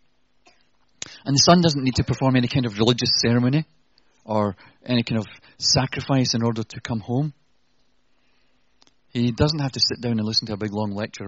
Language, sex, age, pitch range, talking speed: English, male, 30-49, 110-155 Hz, 185 wpm